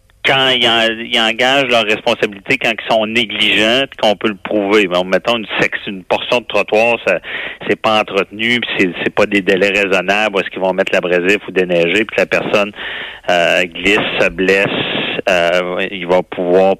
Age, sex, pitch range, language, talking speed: 40-59, male, 95-110 Hz, French, 195 wpm